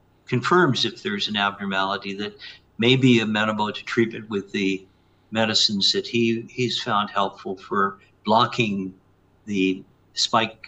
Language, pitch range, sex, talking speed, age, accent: English, 95-110 Hz, male, 130 wpm, 60-79, American